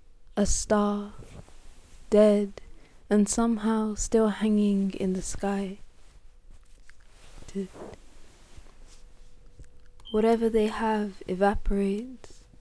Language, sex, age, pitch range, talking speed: English, female, 20-39, 195-220 Hz, 65 wpm